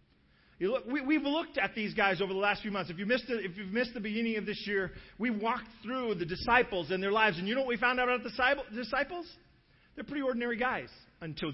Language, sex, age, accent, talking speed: English, male, 40-59, American, 250 wpm